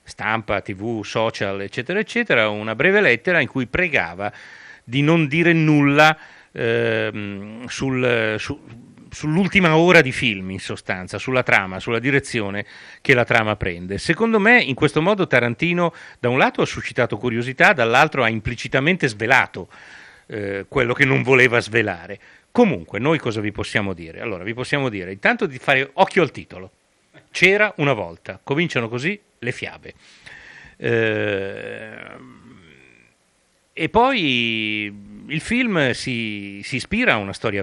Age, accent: 40-59, native